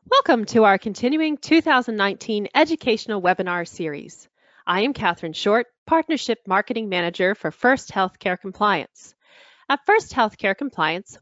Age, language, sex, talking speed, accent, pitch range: 30-49, English, female, 125 wpm, American, 180-255 Hz